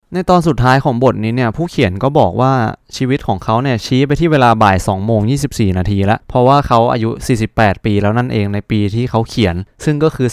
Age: 20-39